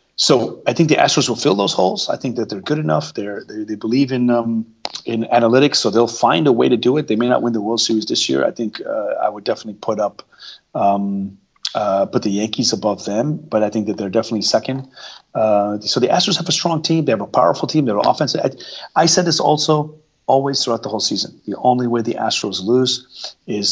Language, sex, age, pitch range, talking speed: English, male, 30-49, 105-125 Hz, 240 wpm